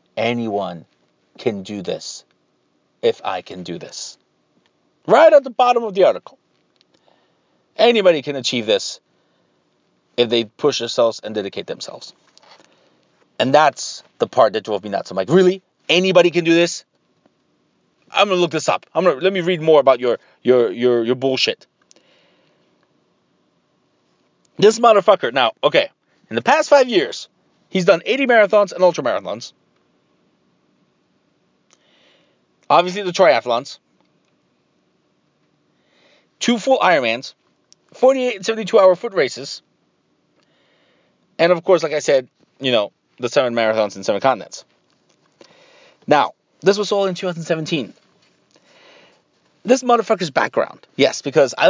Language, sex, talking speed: English, male, 130 wpm